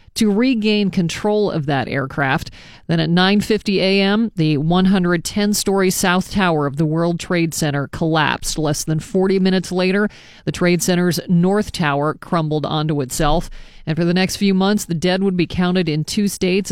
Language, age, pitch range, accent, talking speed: English, 40-59, 160-185 Hz, American, 170 wpm